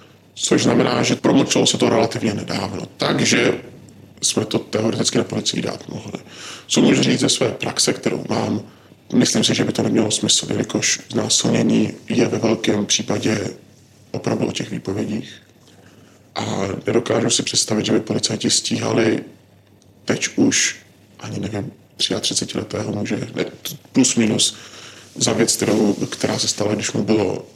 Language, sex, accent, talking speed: Czech, male, native, 145 wpm